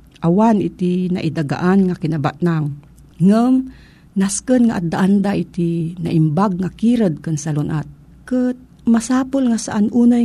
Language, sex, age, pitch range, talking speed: Filipino, female, 50-69, 165-220 Hz, 125 wpm